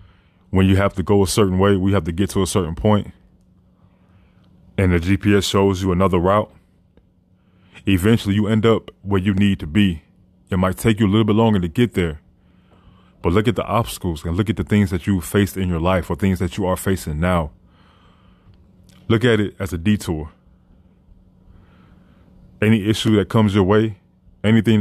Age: 20-39